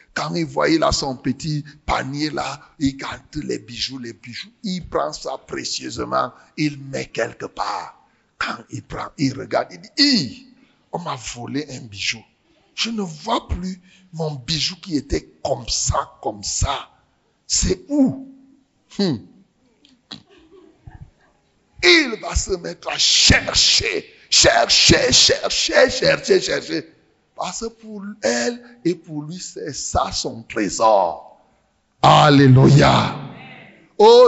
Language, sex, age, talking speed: French, male, 60-79, 130 wpm